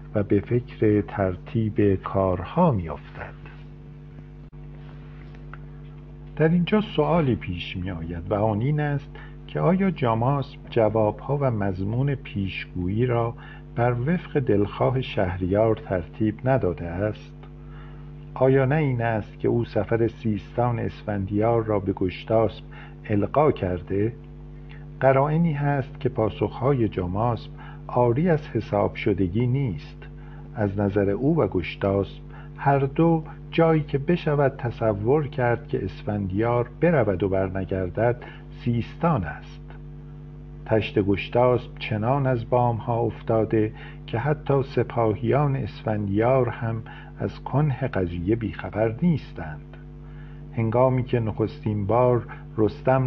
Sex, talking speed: male, 110 wpm